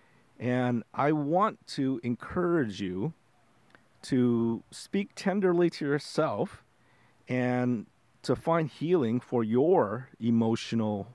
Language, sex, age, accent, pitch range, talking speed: English, male, 40-59, American, 120-150 Hz, 95 wpm